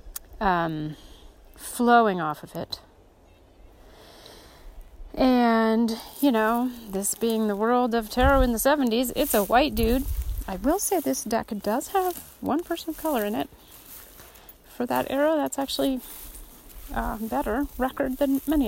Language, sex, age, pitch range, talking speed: English, female, 40-59, 190-260 Hz, 145 wpm